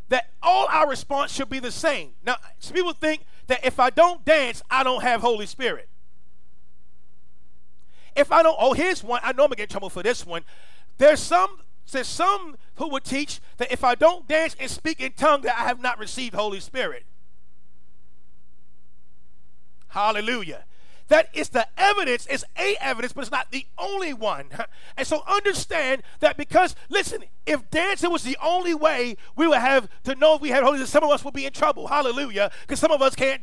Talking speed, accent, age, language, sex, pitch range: 195 wpm, American, 40-59, English, male, 220-315 Hz